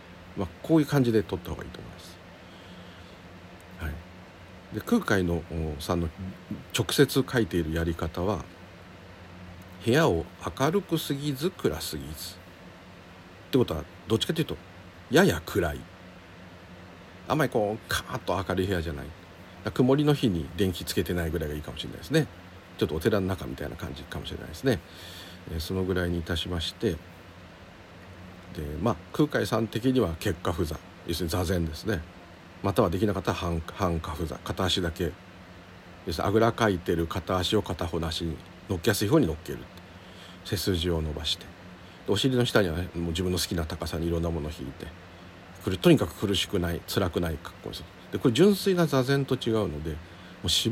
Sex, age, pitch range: male, 50-69, 85-100 Hz